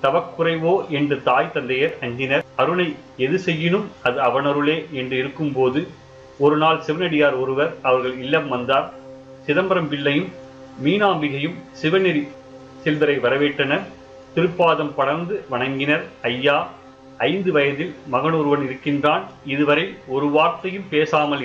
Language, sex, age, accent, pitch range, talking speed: Tamil, male, 30-49, native, 130-155 Hz, 100 wpm